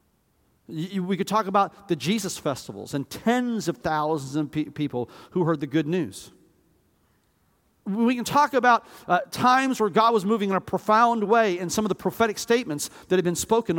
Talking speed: 185 wpm